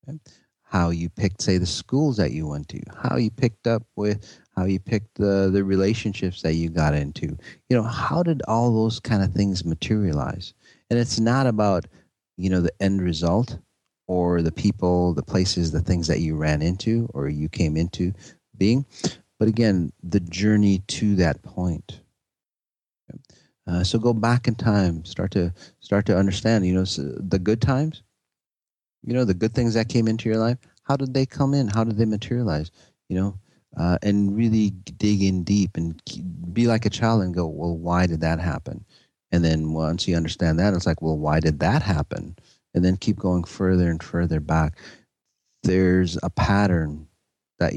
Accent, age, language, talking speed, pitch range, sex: American, 30-49, English, 185 wpm, 85-110 Hz, male